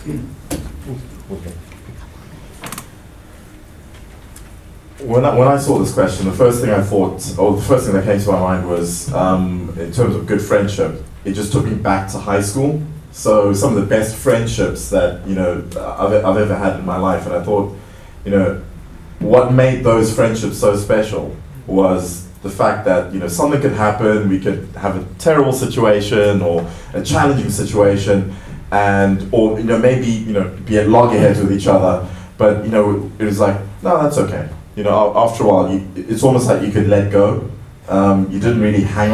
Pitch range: 95-110 Hz